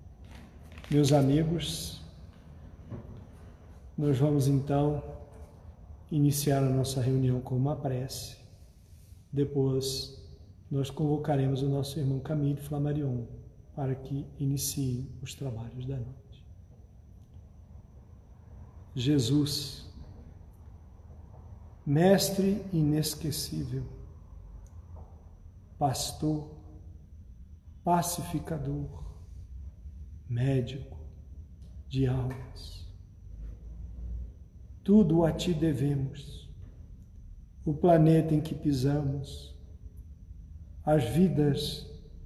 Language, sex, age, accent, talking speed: Portuguese, male, 40-59, Brazilian, 65 wpm